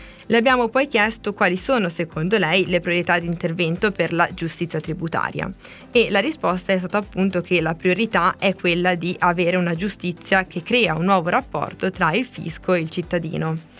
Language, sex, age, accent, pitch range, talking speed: Italian, female, 20-39, native, 170-205 Hz, 185 wpm